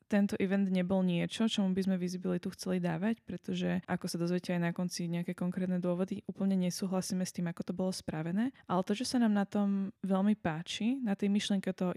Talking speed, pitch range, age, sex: 210 wpm, 180-200 Hz, 20-39, female